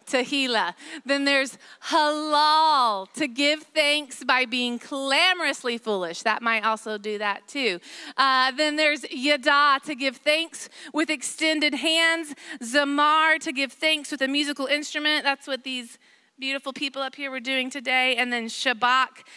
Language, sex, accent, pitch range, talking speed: English, female, American, 245-295 Hz, 150 wpm